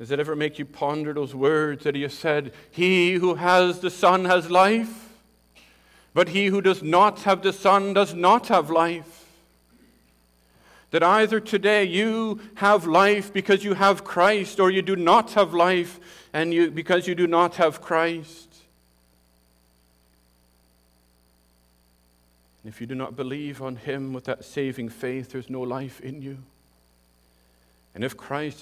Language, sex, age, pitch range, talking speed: English, male, 50-69, 130-175 Hz, 160 wpm